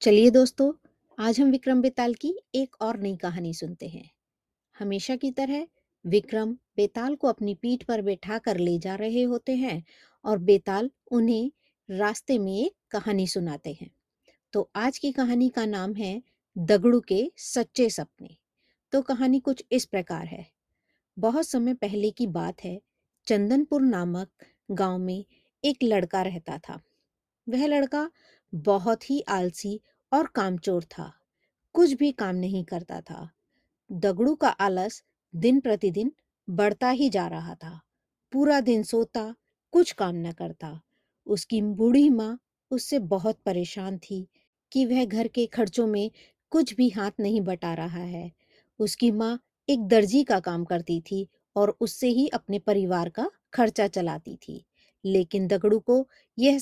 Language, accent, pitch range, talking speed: Hindi, native, 190-255 Hz, 150 wpm